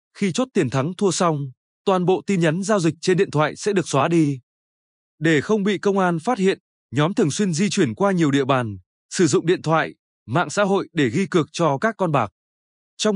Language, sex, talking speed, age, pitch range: Vietnamese, male, 230 wpm, 20-39, 150-200 Hz